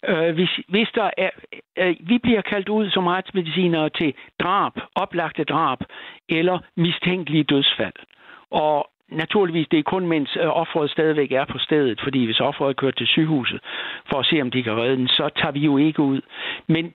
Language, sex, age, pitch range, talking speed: Danish, male, 60-79, 160-195 Hz, 165 wpm